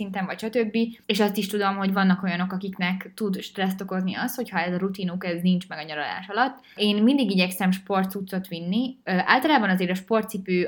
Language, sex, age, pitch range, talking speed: Hungarian, female, 20-39, 185-225 Hz, 195 wpm